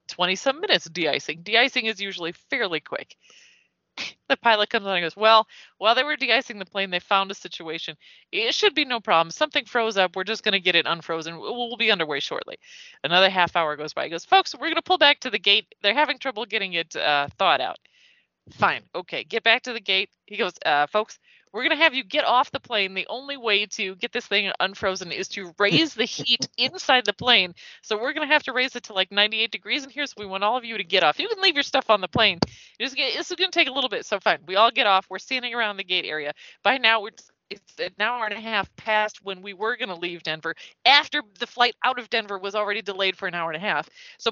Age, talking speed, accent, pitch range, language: 30-49, 265 wpm, American, 190-260 Hz, English